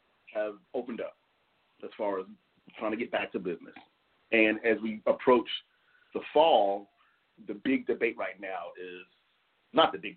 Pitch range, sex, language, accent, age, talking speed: 105-145 Hz, male, English, American, 40-59, 160 wpm